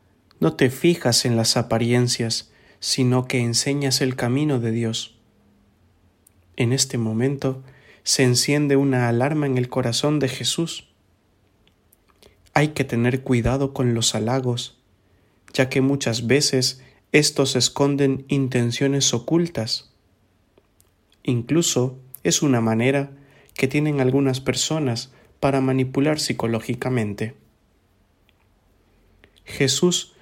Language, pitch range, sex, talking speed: English, 110-140 Hz, male, 105 wpm